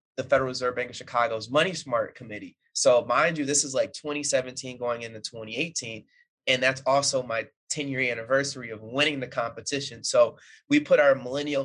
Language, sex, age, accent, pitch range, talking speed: English, male, 20-39, American, 120-145 Hz, 180 wpm